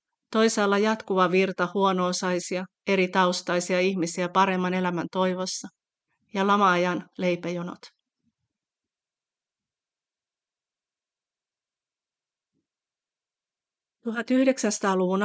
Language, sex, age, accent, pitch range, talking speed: Finnish, female, 30-49, native, 180-205 Hz, 55 wpm